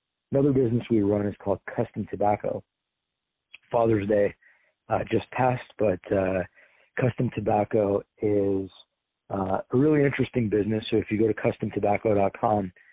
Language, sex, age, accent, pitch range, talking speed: English, male, 40-59, American, 100-110 Hz, 135 wpm